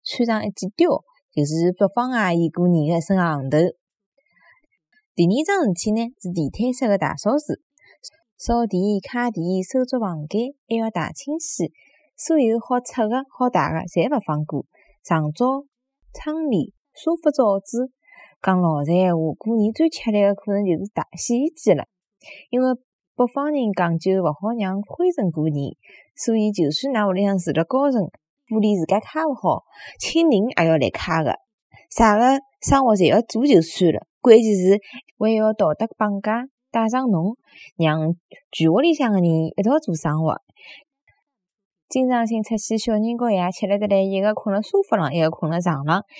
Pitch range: 180-255 Hz